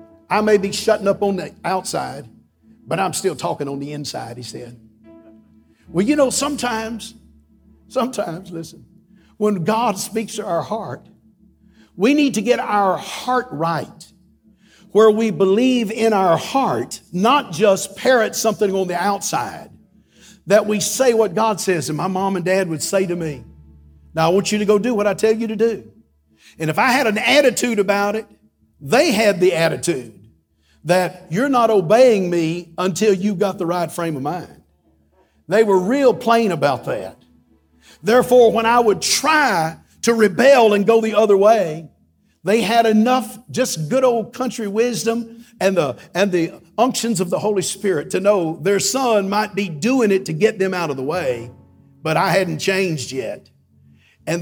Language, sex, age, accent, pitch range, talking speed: English, male, 50-69, American, 165-225 Hz, 175 wpm